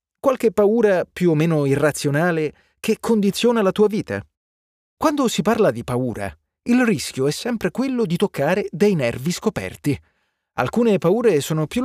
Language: Italian